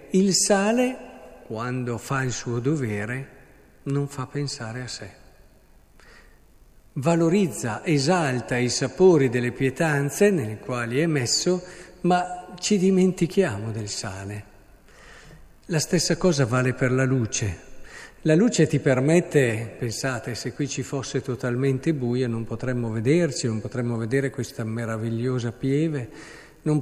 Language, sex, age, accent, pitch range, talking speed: Italian, male, 50-69, native, 125-175 Hz, 125 wpm